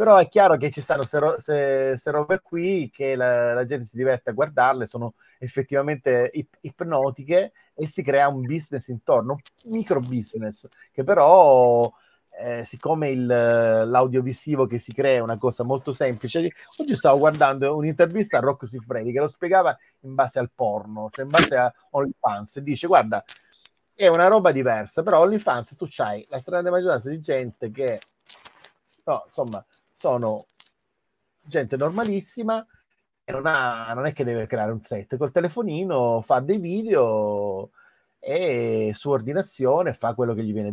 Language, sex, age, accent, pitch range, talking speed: Italian, male, 30-49, native, 120-165 Hz, 160 wpm